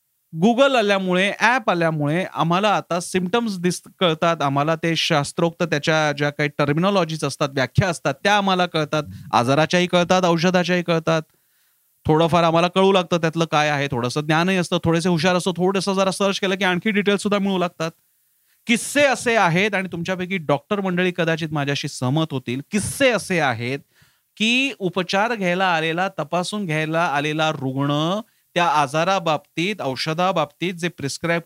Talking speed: 90 wpm